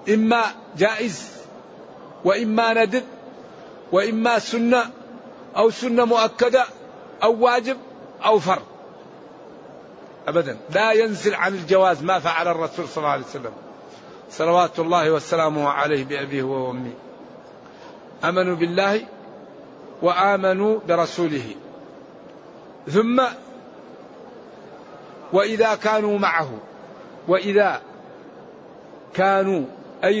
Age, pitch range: 50-69, 185-220 Hz